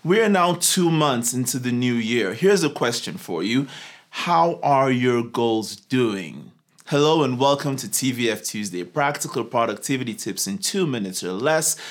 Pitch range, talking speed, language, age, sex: 120-165 Hz, 165 wpm, English, 20-39, male